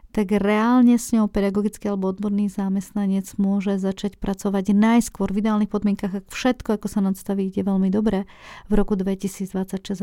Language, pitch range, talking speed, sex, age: Slovak, 195-215 Hz, 155 wpm, female, 40-59